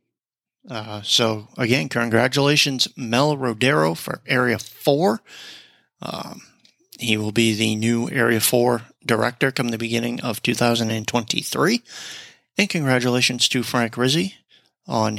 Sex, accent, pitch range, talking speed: male, American, 110-130 Hz, 115 wpm